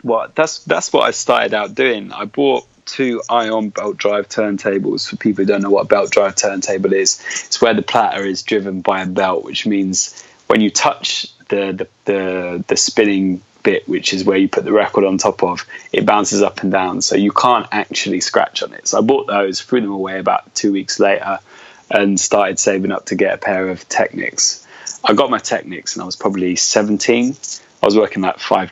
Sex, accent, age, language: male, British, 20-39, English